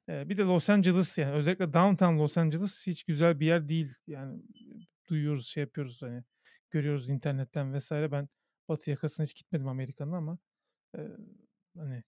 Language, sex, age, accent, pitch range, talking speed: Turkish, male, 40-59, native, 145-180 Hz, 160 wpm